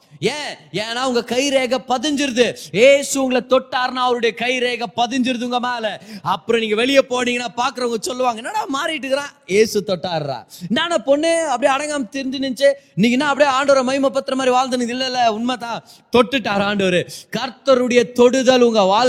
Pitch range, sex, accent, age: 185-260 Hz, male, native, 20-39